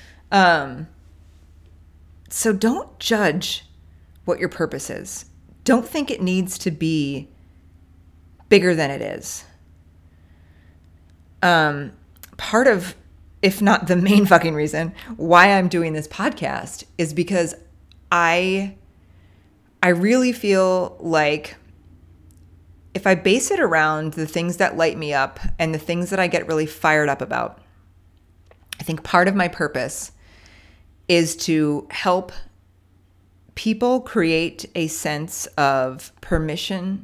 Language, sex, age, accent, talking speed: English, female, 30-49, American, 120 wpm